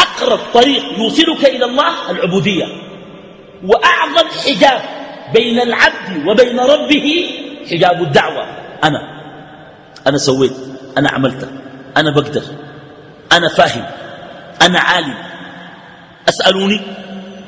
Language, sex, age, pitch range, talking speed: Arabic, male, 50-69, 145-225 Hz, 90 wpm